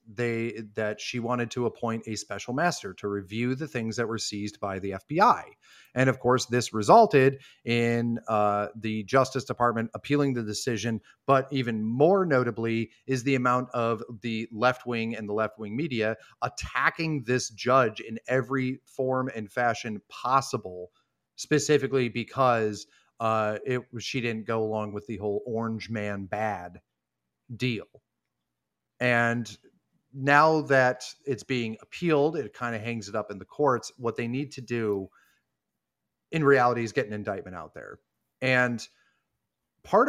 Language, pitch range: English, 110-135 Hz